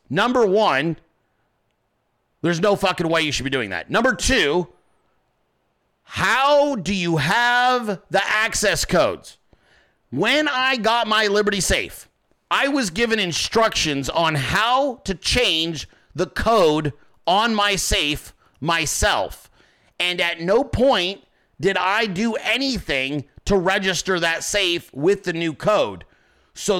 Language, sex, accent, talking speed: English, male, American, 130 wpm